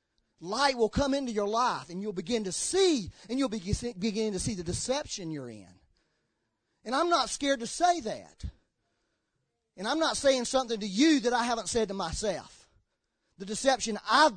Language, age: English, 40-59